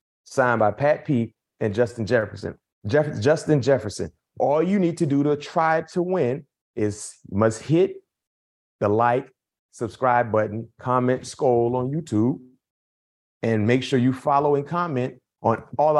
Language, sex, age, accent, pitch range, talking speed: English, male, 30-49, American, 120-165 Hz, 145 wpm